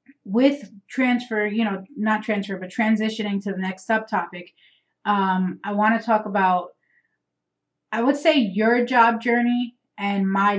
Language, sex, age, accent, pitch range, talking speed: English, female, 30-49, American, 185-220 Hz, 145 wpm